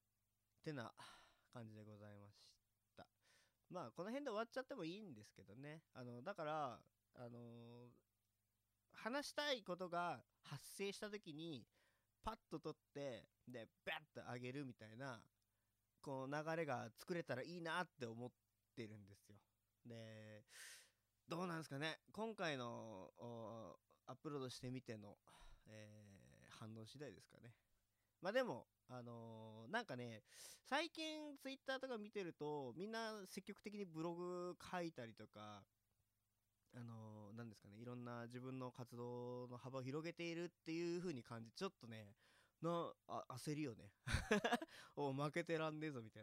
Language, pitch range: Japanese, 105-165 Hz